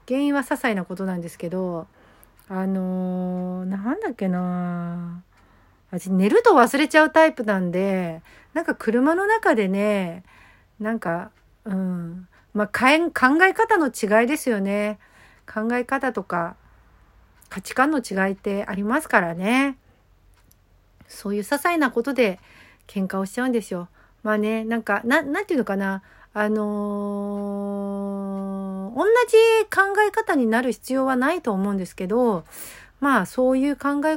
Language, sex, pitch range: Japanese, female, 185-260 Hz